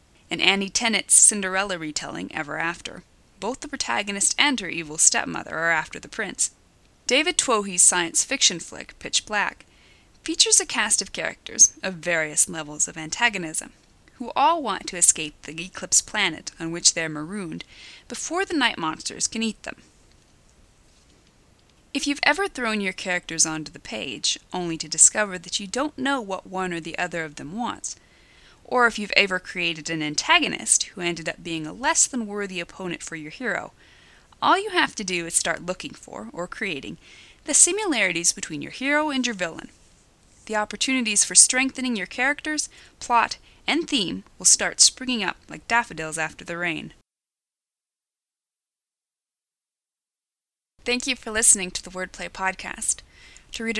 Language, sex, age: English, female, 30-49